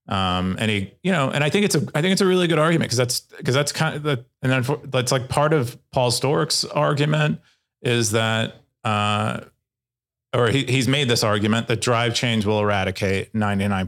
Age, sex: 30-49, male